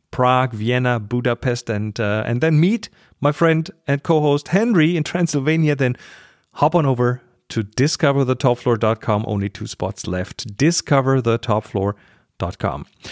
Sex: male